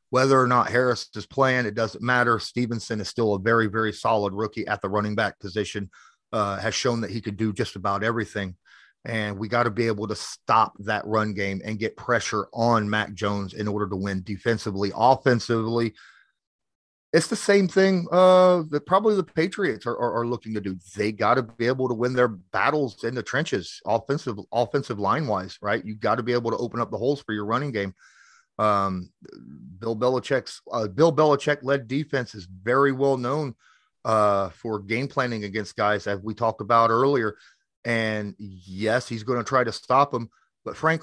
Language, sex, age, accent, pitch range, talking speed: English, male, 30-49, American, 105-130 Hz, 195 wpm